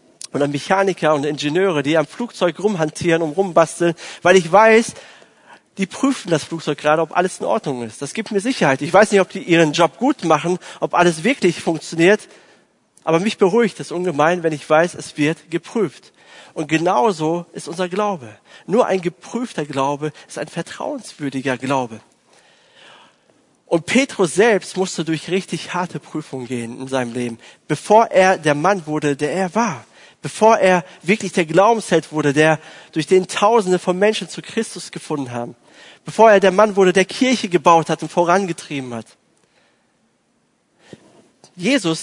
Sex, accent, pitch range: male, German, 150-190 Hz